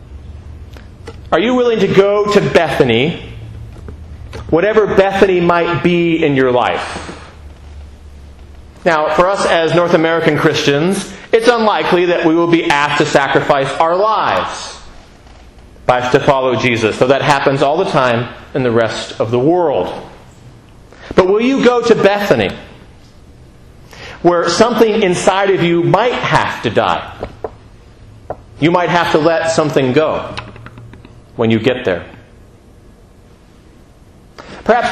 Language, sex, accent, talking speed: English, male, American, 125 wpm